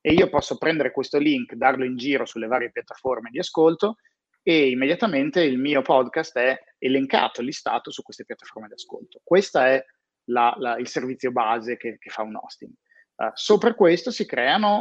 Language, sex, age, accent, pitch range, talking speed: Italian, male, 30-49, native, 120-160 Hz, 165 wpm